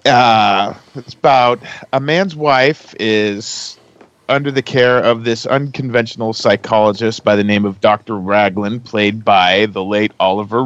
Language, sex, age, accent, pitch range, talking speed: English, male, 40-59, American, 115-145 Hz, 140 wpm